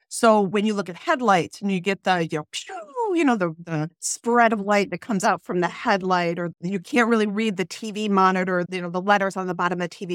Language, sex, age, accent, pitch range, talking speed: English, female, 40-59, American, 180-220 Hz, 250 wpm